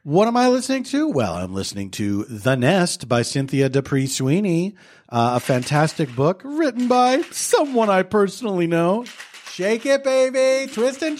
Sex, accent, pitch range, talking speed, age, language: male, American, 140-210 Hz, 160 wpm, 40-59, English